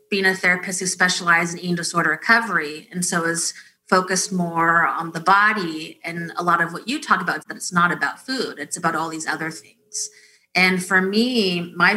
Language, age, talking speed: English, 20-39, 205 wpm